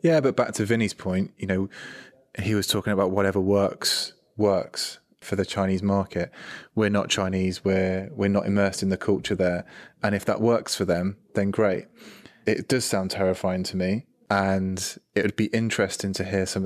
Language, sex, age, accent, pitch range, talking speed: English, male, 20-39, British, 95-105 Hz, 185 wpm